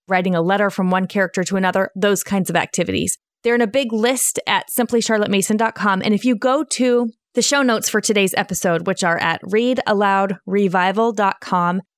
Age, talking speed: 20-39, 170 wpm